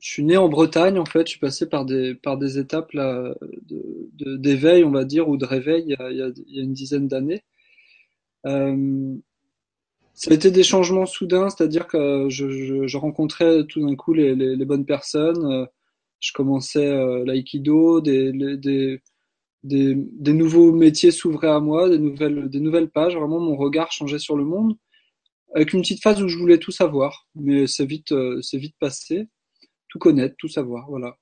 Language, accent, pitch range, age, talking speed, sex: French, French, 135-175 Hz, 20-39, 195 wpm, male